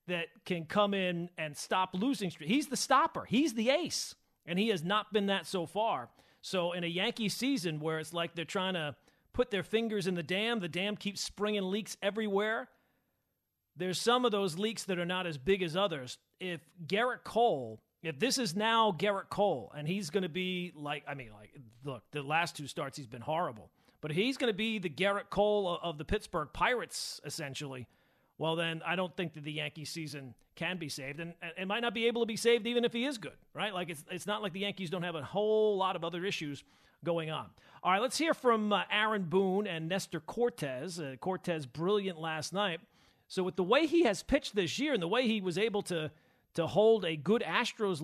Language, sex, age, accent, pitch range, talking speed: English, male, 40-59, American, 160-210 Hz, 220 wpm